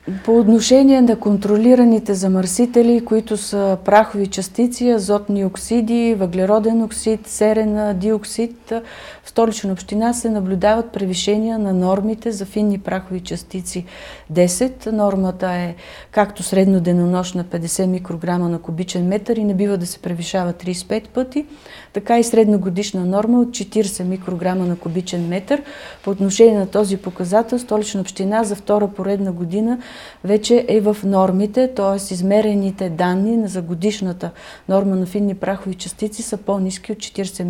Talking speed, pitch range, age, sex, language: 140 wpm, 185-220 Hz, 40-59, female, Bulgarian